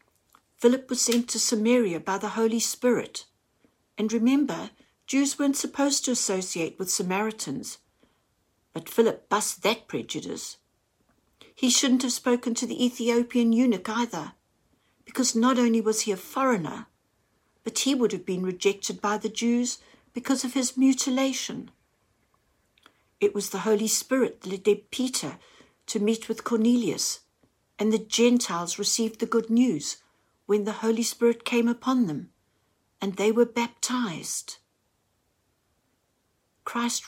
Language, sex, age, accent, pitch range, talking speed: English, female, 60-79, British, 200-240 Hz, 135 wpm